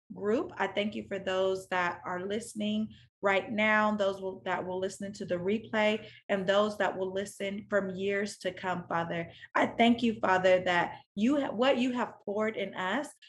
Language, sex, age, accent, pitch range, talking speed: English, female, 30-49, American, 185-220 Hz, 190 wpm